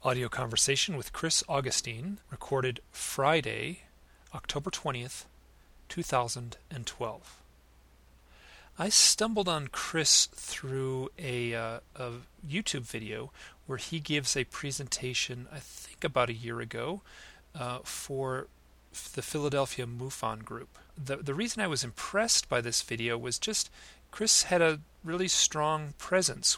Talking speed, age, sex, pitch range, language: 120 wpm, 40-59, male, 120-155 Hz, English